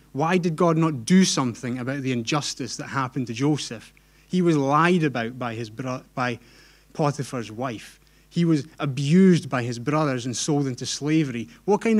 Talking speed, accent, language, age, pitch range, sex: 175 wpm, British, English, 30-49, 125-150 Hz, male